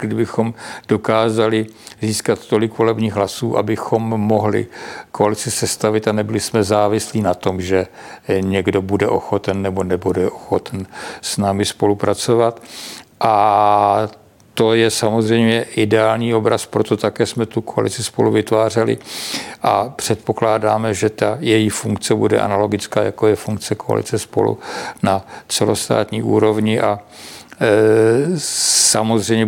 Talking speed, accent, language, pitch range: 115 wpm, native, Czech, 105-110 Hz